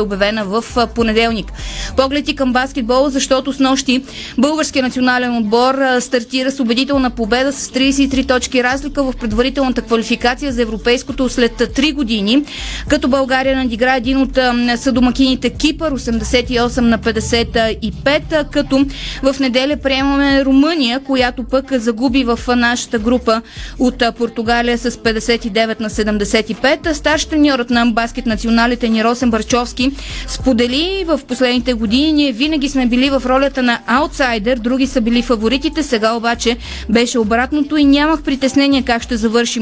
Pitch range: 235-275 Hz